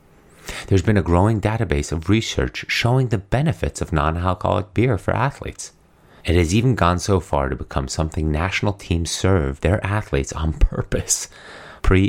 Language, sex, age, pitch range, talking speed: English, male, 30-49, 75-95 Hz, 160 wpm